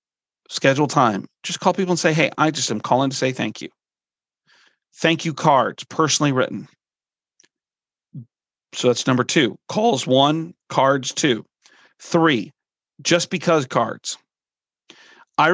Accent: American